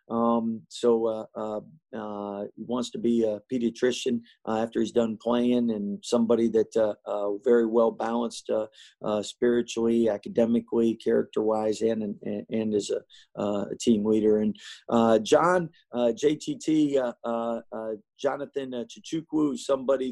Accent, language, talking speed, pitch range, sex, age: American, English, 145 wpm, 115-135 Hz, male, 50-69